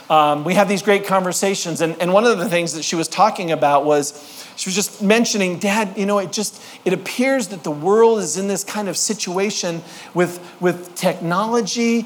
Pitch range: 180-230 Hz